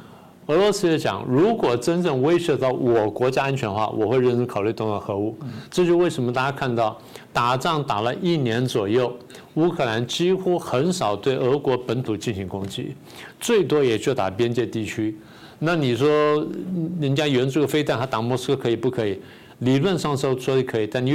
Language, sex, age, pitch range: Chinese, male, 50-69, 115-145 Hz